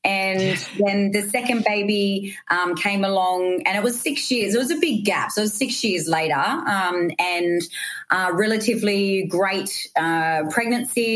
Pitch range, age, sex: 165-205 Hz, 30-49, female